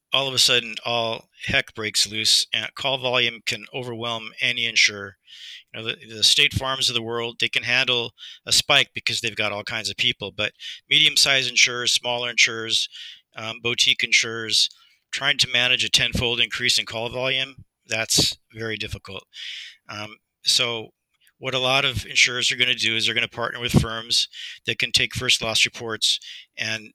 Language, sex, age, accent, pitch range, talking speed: English, male, 50-69, American, 110-125 Hz, 185 wpm